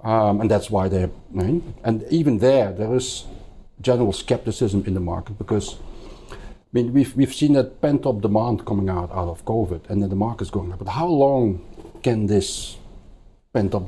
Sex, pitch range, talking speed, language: male, 95-120 Hz, 180 wpm, English